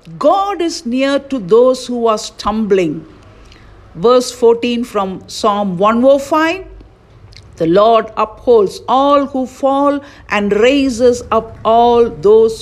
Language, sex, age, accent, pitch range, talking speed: English, female, 50-69, Indian, 205-285 Hz, 115 wpm